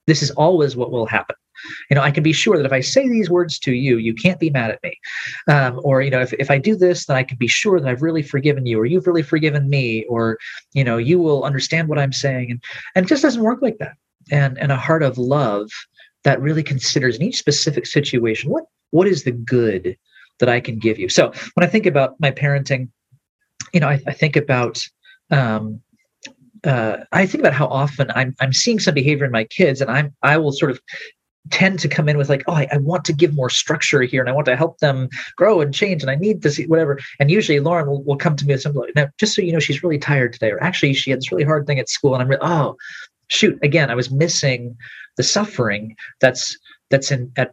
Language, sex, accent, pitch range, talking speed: English, male, American, 130-160 Hz, 250 wpm